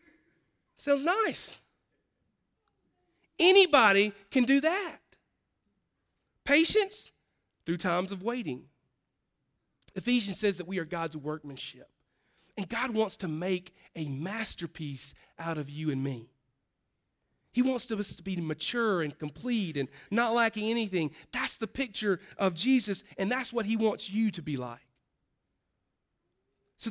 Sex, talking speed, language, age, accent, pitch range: male, 125 wpm, English, 40-59, American, 185-265 Hz